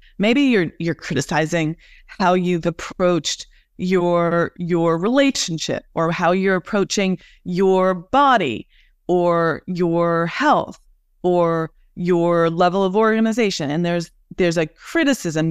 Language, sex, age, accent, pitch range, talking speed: English, female, 30-49, American, 180-250 Hz, 110 wpm